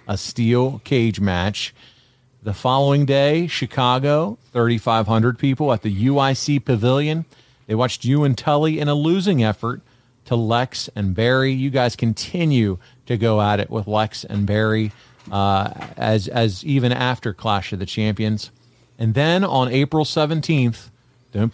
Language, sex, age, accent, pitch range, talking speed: English, male, 40-59, American, 110-135 Hz, 150 wpm